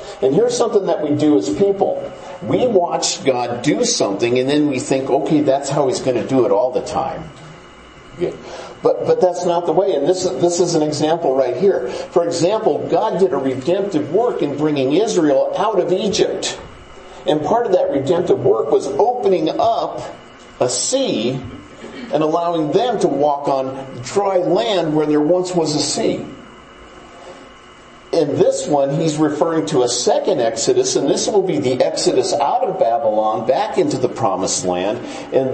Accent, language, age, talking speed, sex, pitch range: American, English, 50-69, 175 wpm, male, 150-200 Hz